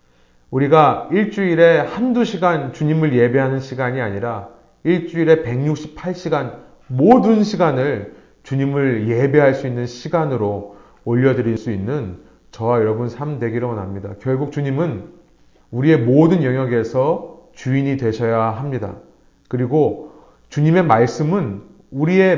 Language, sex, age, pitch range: Korean, male, 30-49, 115-150 Hz